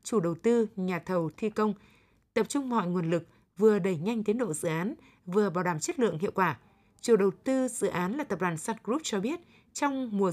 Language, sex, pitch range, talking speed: Vietnamese, female, 180-225 Hz, 230 wpm